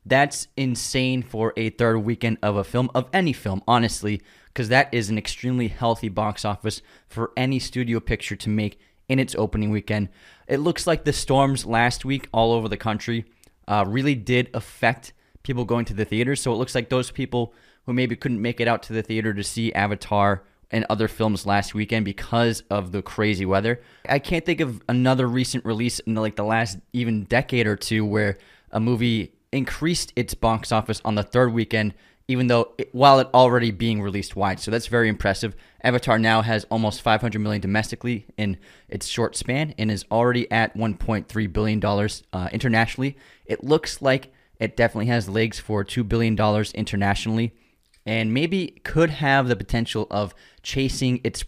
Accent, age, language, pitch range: American, 20-39, English, 105-125 Hz